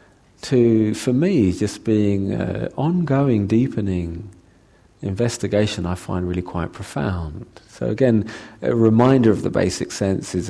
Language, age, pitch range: English, 40-59, 90-110 Hz